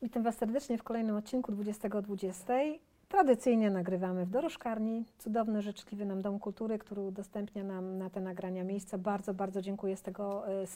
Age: 40-59